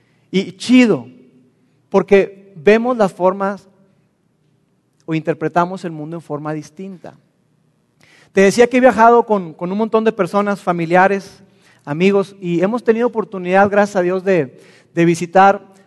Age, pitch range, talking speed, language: 40-59, 175-225 Hz, 135 wpm, Spanish